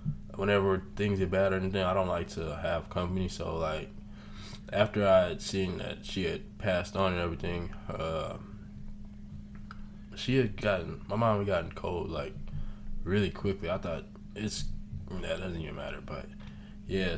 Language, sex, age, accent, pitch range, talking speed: English, male, 20-39, American, 95-105 Hz, 165 wpm